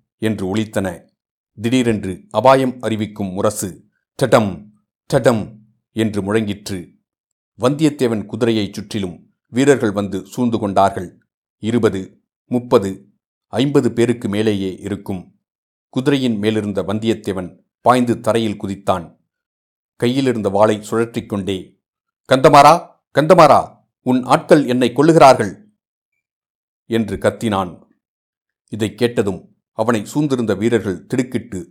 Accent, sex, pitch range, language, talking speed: native, male, 100-120 Hz, Tamil, 85 wpm